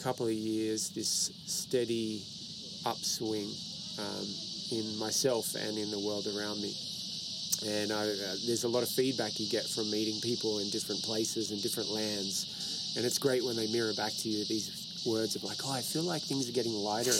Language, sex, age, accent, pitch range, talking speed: English, male, 20-39, Australian, 110-125 Hz, 190 wpm